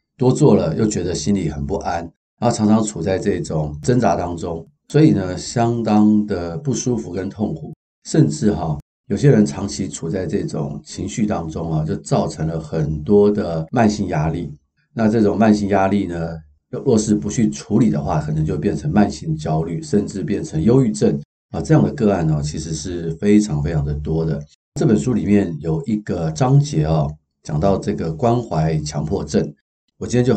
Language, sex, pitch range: Chinese, male, 75-105 Hz